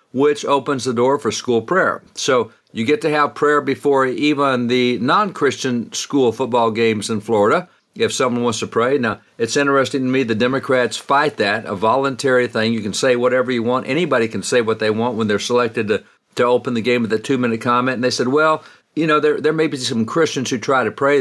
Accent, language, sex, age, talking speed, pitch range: American, English, male, 60-79, 225 wpm, 120-150 Hz